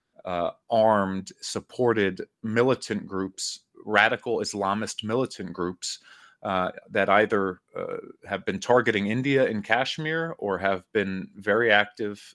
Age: 30-49